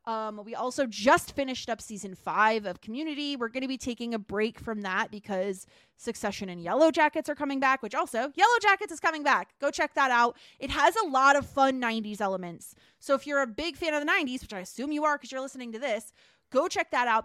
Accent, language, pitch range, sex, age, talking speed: American, English, 215-285 Hz, female, 20-39, 240 wpm